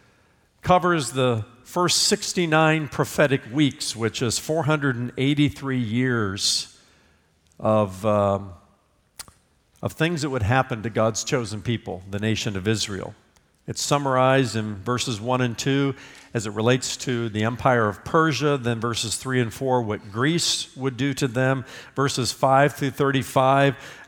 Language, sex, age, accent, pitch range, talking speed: English, male, 50-69, American, 120-155 Hz, 130 wpm